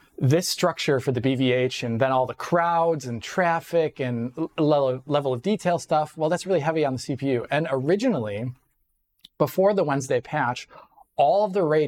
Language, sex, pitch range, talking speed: English, male, 120-150 Hz, 170 wpm